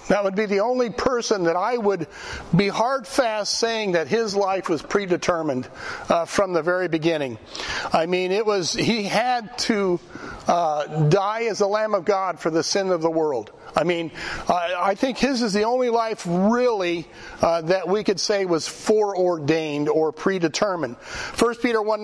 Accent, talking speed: American, 180 wpm